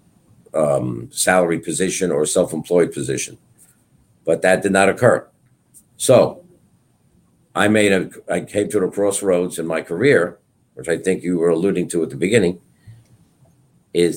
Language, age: English, 60-79